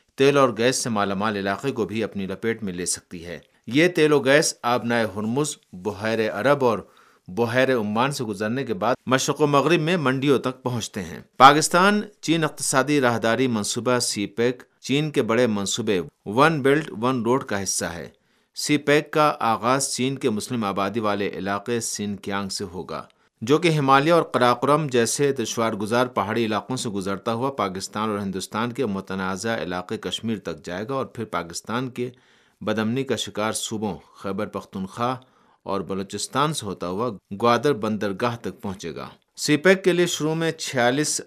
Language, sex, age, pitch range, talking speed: Urdu, male, 50-69, 105-135 Hz, 175 wpm